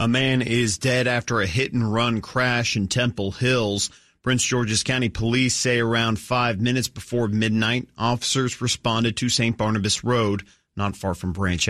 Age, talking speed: 40-59, 160 wpm